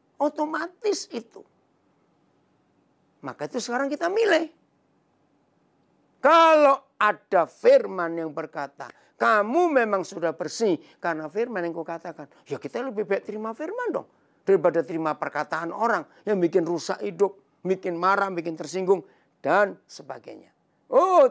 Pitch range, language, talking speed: 165-260 Hz, Indonesian, 120 wpm